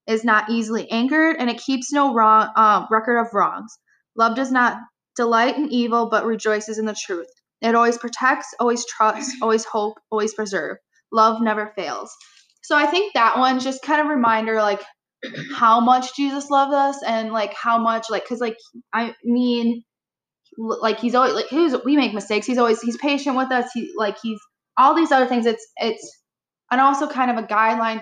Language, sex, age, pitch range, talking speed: English, female, 10-29, 215-255 Hz, 195 wpm